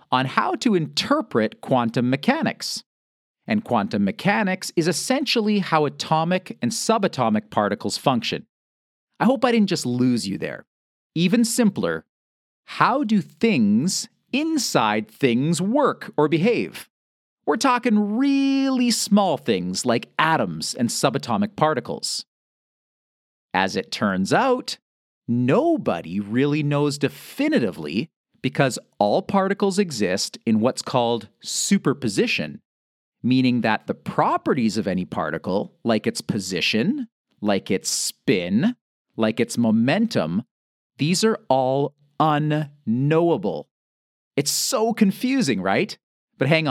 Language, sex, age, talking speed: English, male, 40-59, 110 wpm